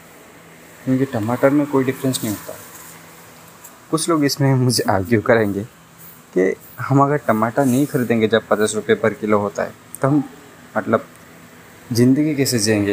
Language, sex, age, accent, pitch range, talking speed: Hindi, male, 20-39, native, 100-130 Hz, 150 wpm